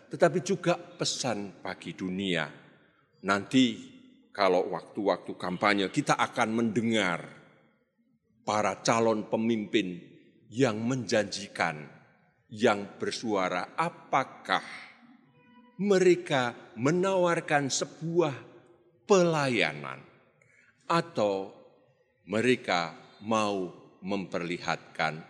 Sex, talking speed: male, 65 wpm